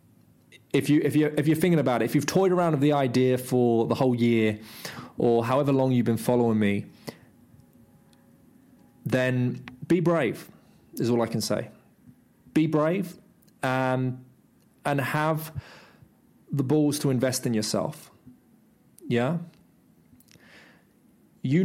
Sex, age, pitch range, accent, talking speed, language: male, 20-39, 115-145 Hz, British, 135 wpm, English